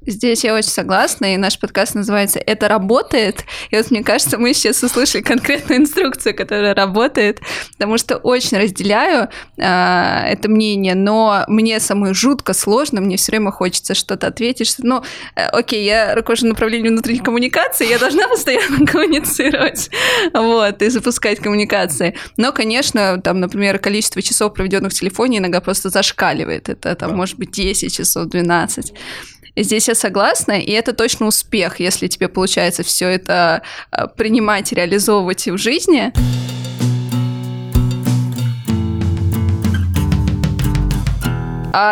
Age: 20-39